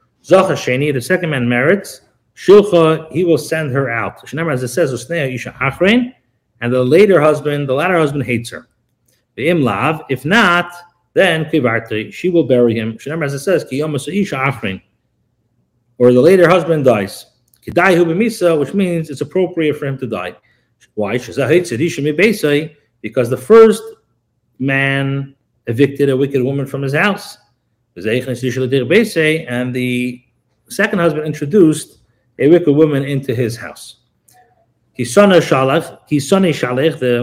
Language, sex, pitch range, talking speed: English, male, 125-170 Hz, 100 wpm